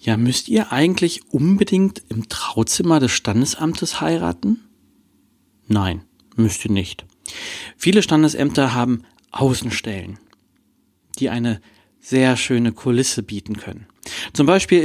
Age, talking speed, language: 40-59, 110 wpm, German